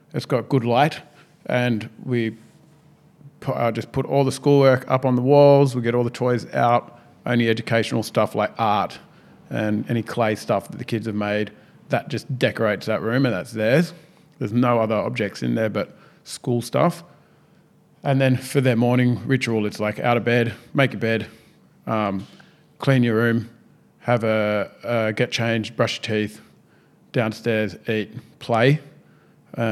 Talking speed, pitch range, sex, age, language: 170 wpm, 110-130 Hz, male, 30-49, English